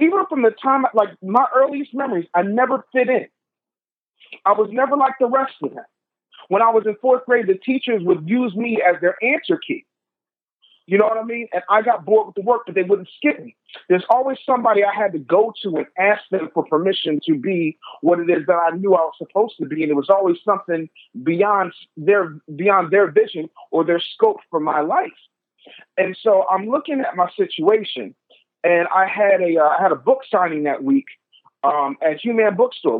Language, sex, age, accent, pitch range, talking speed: English, male, 40-59, American, 170-240 Hz, 210 wpm